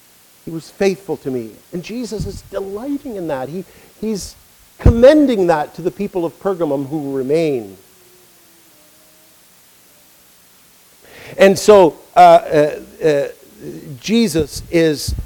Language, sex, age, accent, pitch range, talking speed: English, male, 50-69, American, 140-210 Hz, 105 wpm